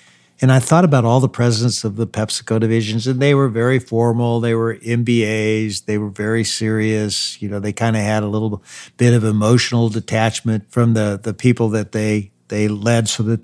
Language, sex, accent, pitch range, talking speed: English, male, American, 110-145 Hz, 200 wpm